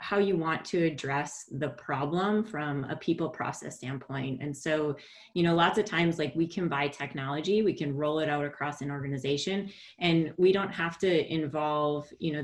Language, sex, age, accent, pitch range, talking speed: English, female, 30-49, American, 150-180 Hz, 195 wpm